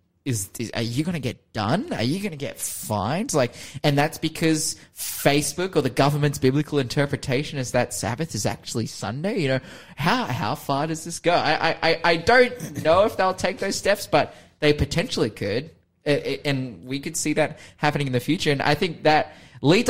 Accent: Australian